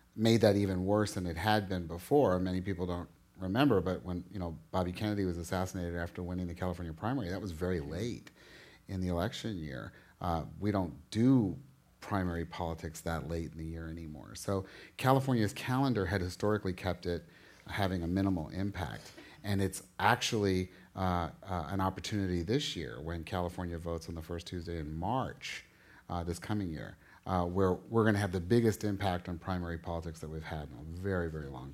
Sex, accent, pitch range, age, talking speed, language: male, American, 85-105 Hz, 30-49, 185 wpm, English